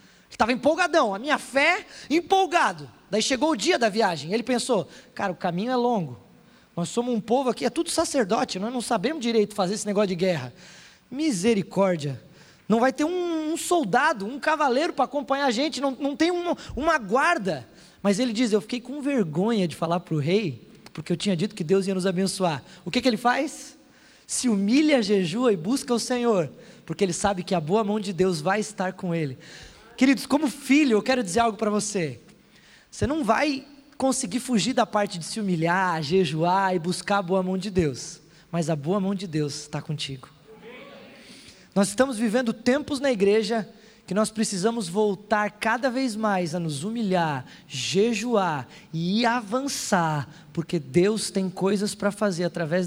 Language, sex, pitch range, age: Portuguese, male, 180-250 Hz, 20-39